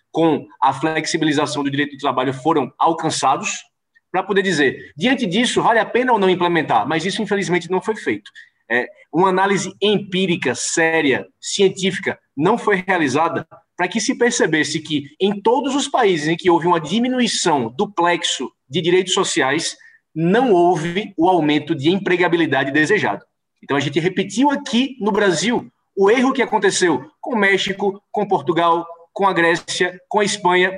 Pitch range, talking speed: 170-220 Hz, 160 wpm